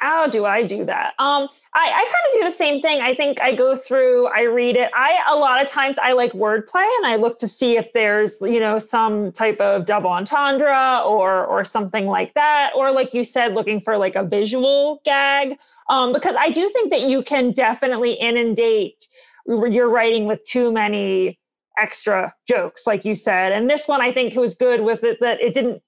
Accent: American